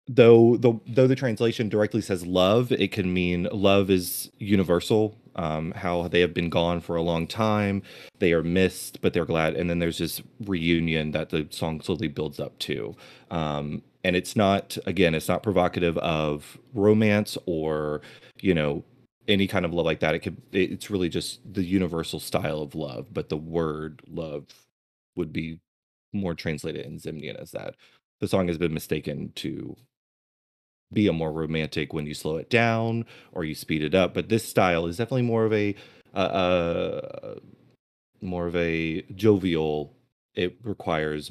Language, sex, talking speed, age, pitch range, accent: English, male, 175 wpm, 30-49, 80-105 Hz, American